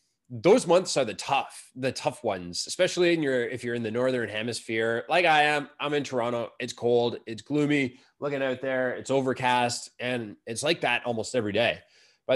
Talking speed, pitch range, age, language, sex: 195 wpm, 115-160 Hz, 20-39, English, male